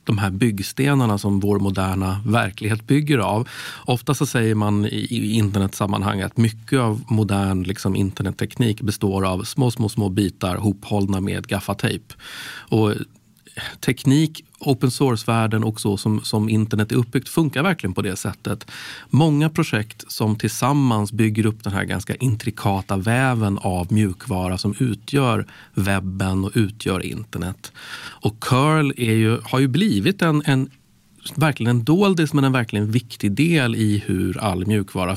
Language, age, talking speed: Swedish, 40-59, 145 wpm